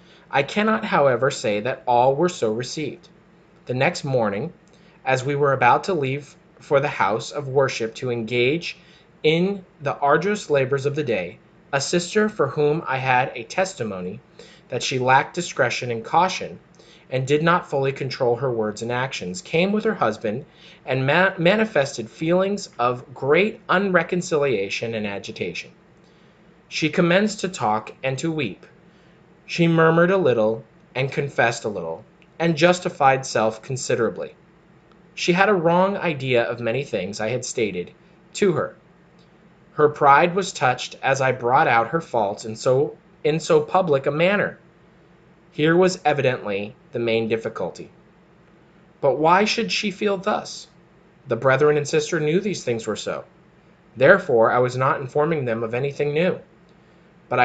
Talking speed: 150 wpm